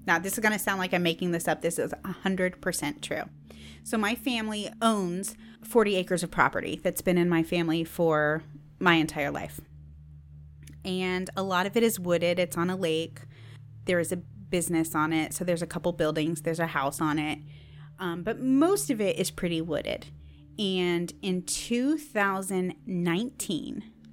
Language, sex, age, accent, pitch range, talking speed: English, female, 30-49, American, 150-185 Hz, 175 wpm